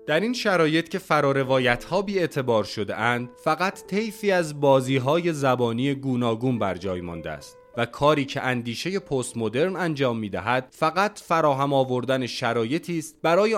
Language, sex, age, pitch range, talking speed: Persian, male, 30-49, 125-165 Hz, 145 wpm